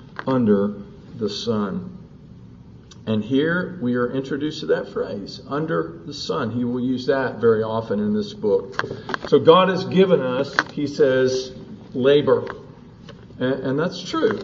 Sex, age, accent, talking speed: male, 50-69, American, 140 wpm